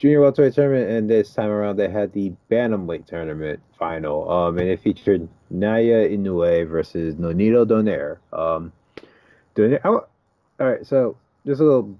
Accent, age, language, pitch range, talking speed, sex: American, 30-49, English, 90-115 Hz, 160 wpm, male